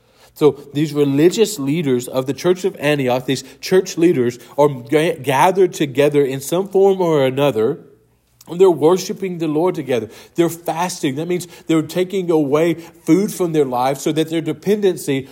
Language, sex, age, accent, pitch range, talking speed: English, male, 40-59, American, 130-170 Hz, 160 wpm